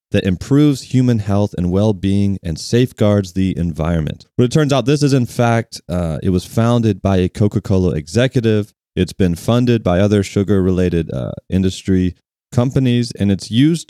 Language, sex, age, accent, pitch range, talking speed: English, male, 30-49, American, 90-115 Hz, 160 wpm